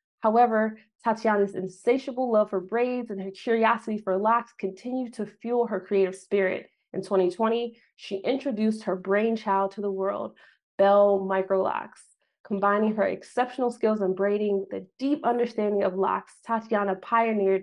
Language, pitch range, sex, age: English, 195-235 Hz, female, 20-39